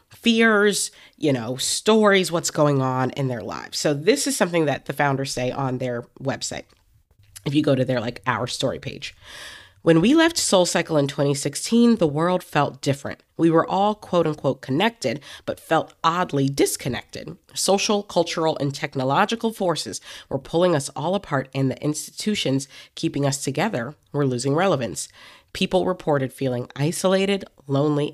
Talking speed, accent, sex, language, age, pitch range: 160 wpm, American, female, English, 30-49, 130-180 Hz